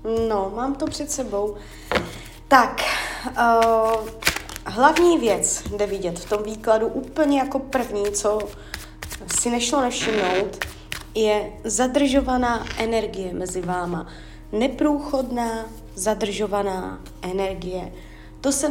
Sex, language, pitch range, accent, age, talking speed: female, Czech, 205-250 Hz, native, 20-39, 100 wpm